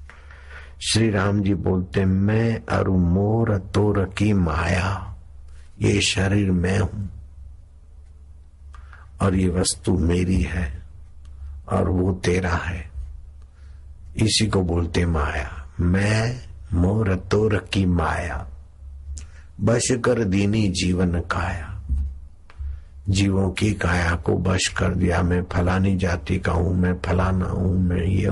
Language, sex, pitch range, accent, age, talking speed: Hindi, male, 80-95 Hz, native, 60-79, 115 wpm